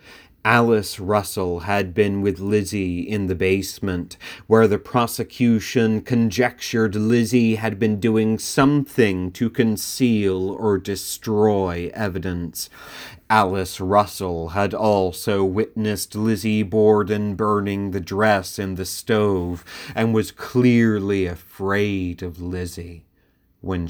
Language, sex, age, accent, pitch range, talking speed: English, male, 30-49, American, 90-105 Hz, 110 wpm